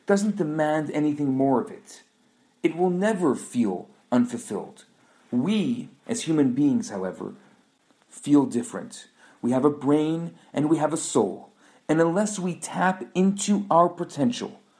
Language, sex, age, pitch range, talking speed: English, male, 40-59, 135-200 Hz, 140 wpm